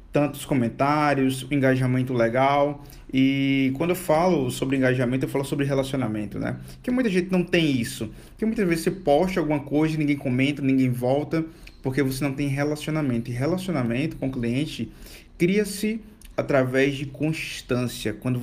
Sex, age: male, 20-39